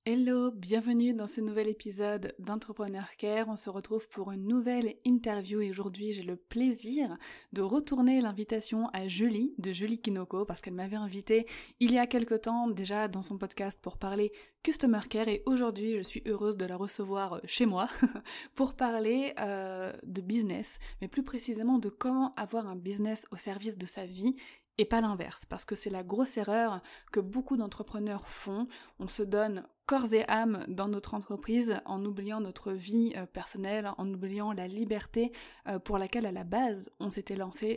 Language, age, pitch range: French, 20-39, 195-230 Hz